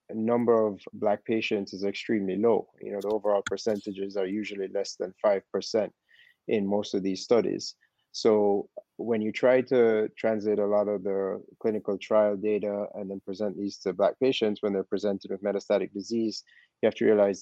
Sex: male